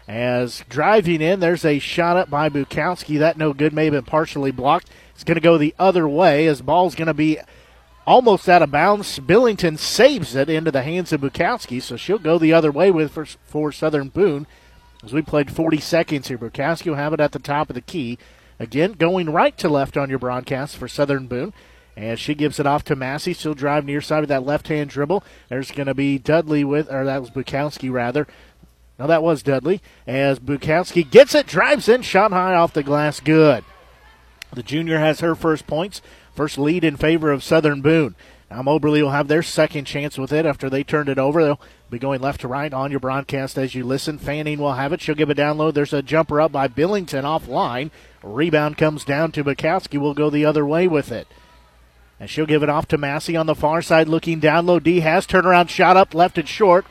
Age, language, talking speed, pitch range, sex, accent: 40-59, English, 225 wpm, 140-160 Hz, male, American